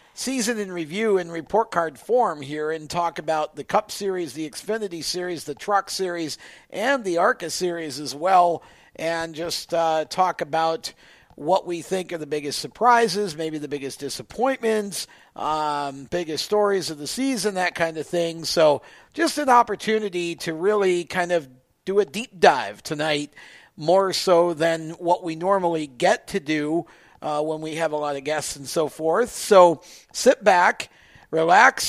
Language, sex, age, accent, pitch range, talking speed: English, male, 50-69, American, 160-205 Hz, 165 wpm